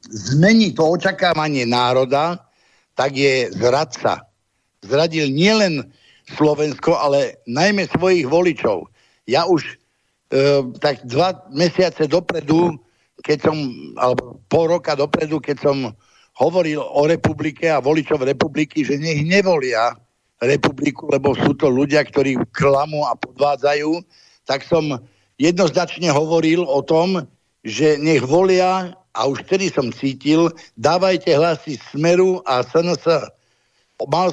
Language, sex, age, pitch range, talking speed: Slovak, male, 60-79, 135-170 Hz, 115 wpm